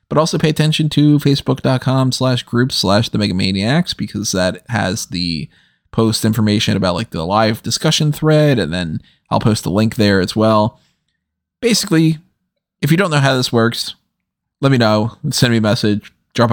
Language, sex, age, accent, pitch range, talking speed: English, male, 20-39, American, 105-145 Hz, 170 wpm